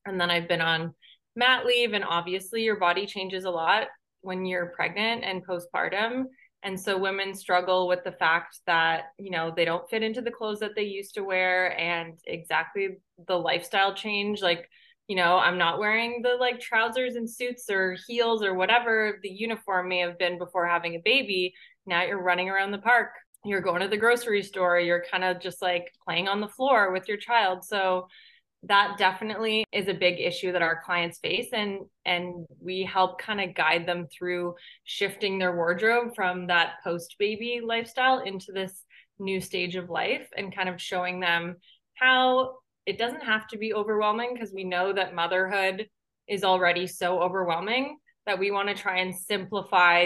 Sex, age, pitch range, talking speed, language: female, 20-39, 180-220 Hz, 185 wpm, English